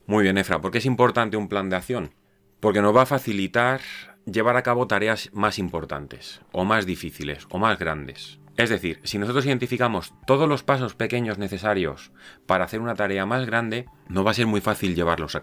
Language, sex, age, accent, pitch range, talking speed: Spanish, male, 30-49, Spanish, 95-120 Hz, 200 wpm